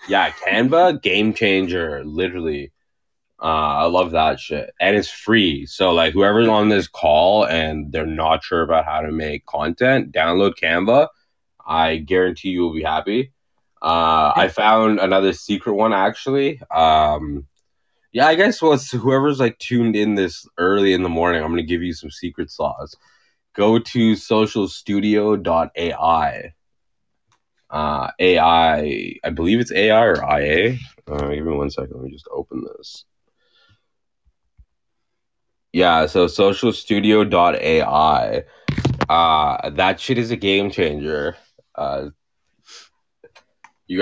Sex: male